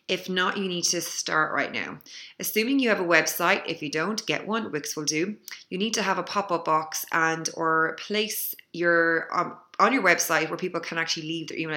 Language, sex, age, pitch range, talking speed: English, female, 20-39, 160-195 Hz, 220 wpm